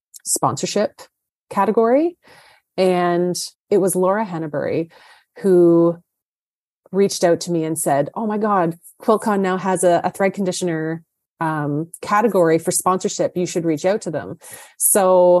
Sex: female